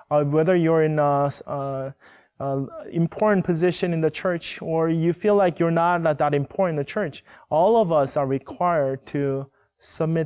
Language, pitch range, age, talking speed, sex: English, 145-175 Hz, 20-39, 180 wpm, male